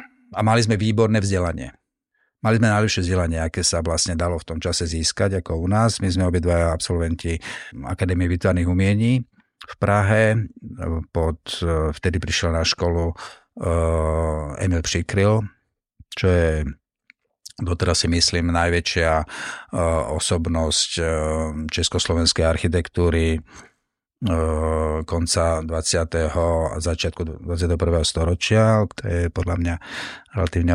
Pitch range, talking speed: 80-95 Hz, 115 wpm